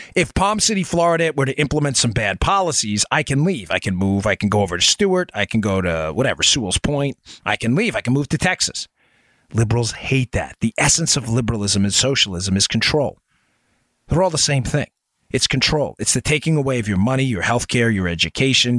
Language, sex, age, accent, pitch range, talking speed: English, male, 40-59, American, 120-170 Hz, 215 wpm